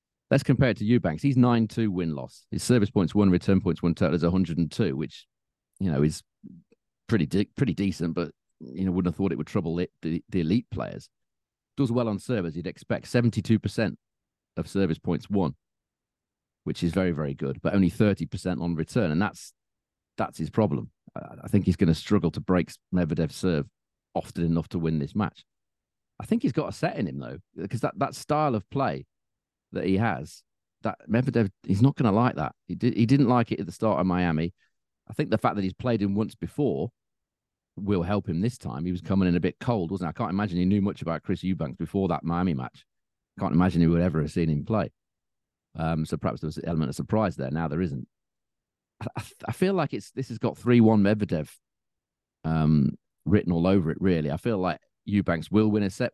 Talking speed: 220 wpm